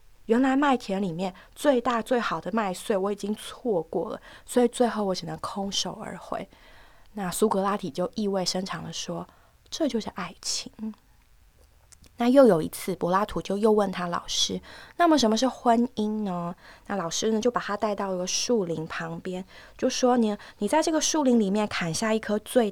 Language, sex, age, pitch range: Chinese, female, 20-39, 180-235 Hz